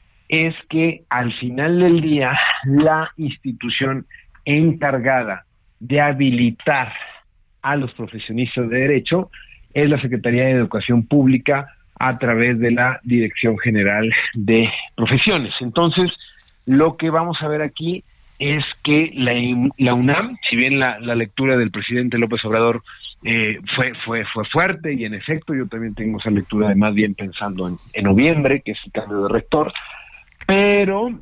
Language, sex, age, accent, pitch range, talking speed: Spanish, male, 50-69, Mexican, 115-145 Hz, 150 wpm